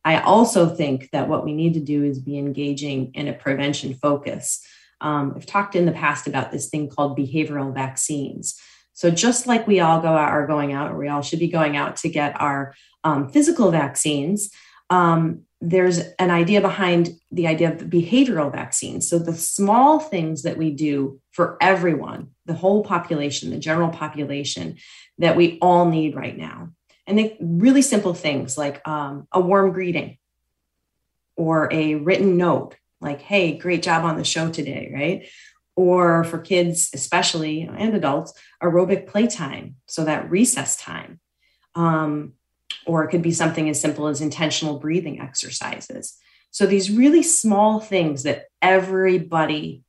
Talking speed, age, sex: 165 wpm, 30-49, female